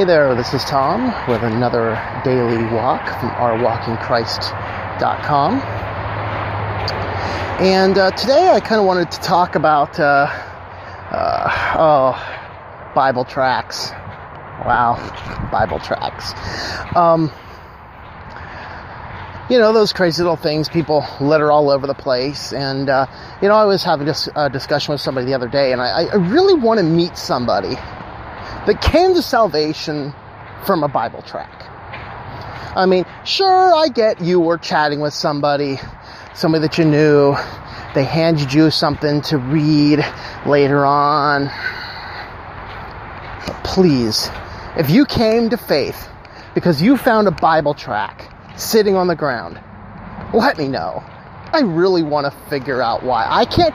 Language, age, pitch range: English, 30-49, 115-175 Hz